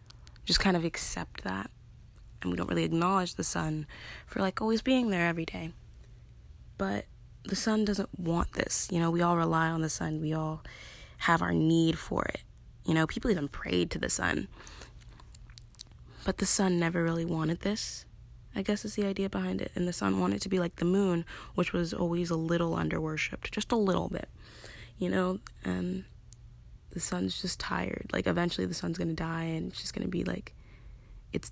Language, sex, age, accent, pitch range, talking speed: English, female, 20-39, American, 115-180 Hz, 195 wpm